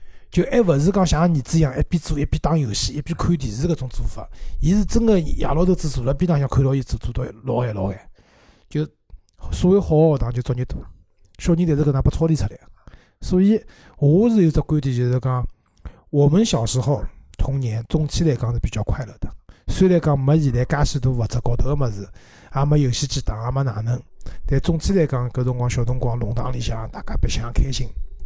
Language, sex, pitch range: Chinese, male, 120-160 Hz